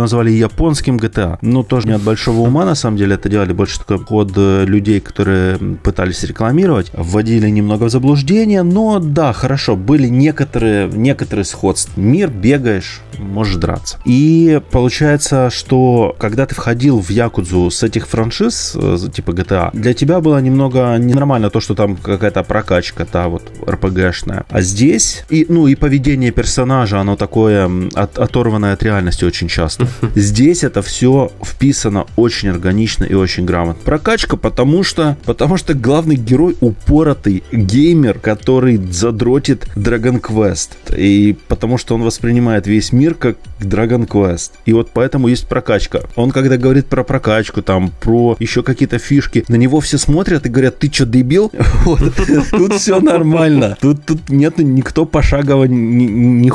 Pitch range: 100-135 Hz